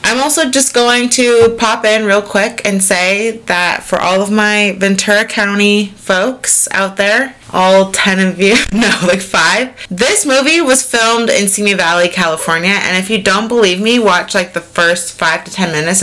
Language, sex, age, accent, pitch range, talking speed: English, female, 30-49, American, 170-215 Hz, 185 wpm